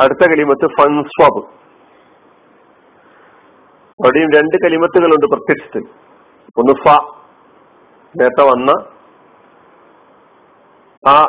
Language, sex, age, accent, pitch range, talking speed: Malayalam, male, 50-69, native, 140-160 Hz, 65 wpm